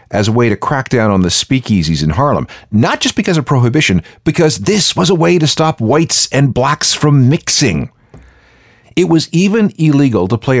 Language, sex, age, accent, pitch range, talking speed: English, male, 50-69, American, 105-150 Hz, 190 wpm